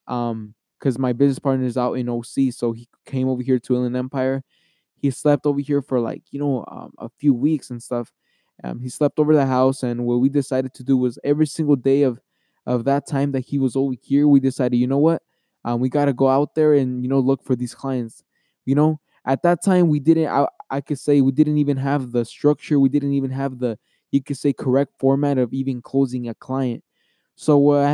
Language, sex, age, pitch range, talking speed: English, male, 20-39, 125-140 Hz, 235 wpm